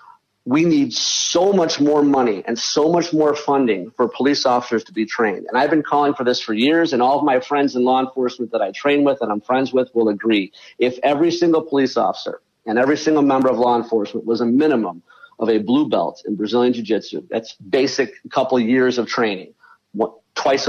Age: 50-69